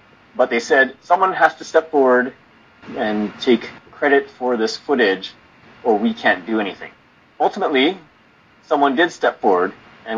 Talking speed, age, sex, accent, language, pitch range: 145 wpm, 30-49, male, American, German, 105-135 Hz